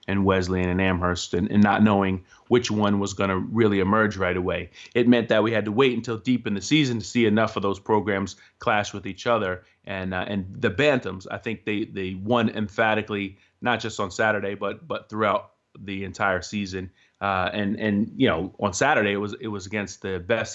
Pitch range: 100-115 Hz